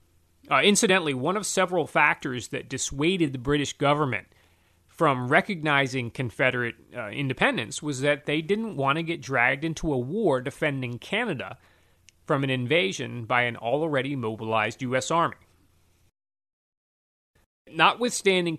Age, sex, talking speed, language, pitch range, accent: 30-49, male, 125 wpm, English, 120-165 Hz, American